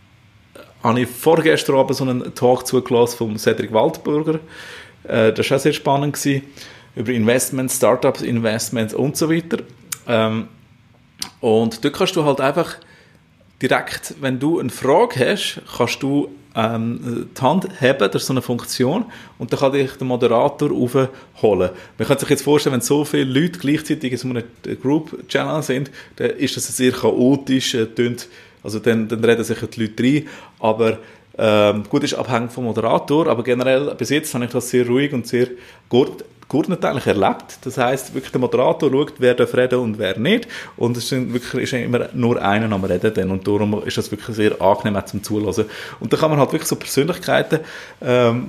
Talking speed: 185 wpm